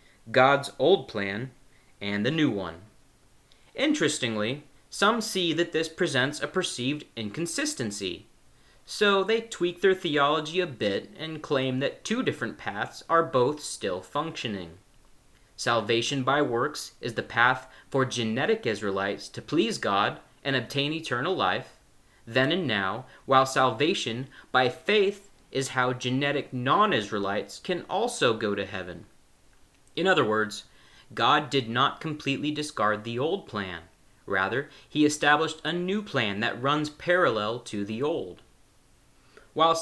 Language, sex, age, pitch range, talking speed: English, male, 30-49, 115-155 Hz, 135 wpm